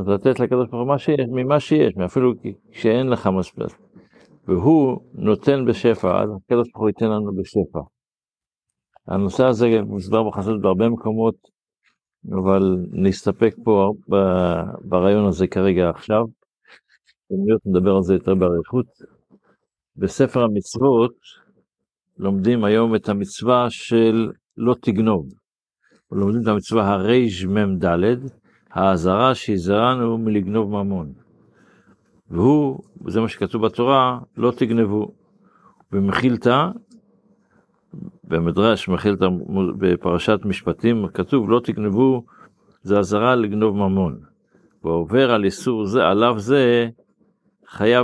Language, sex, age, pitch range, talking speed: Hebrew, male, 60-79, 95-120 Hz, 100 wpm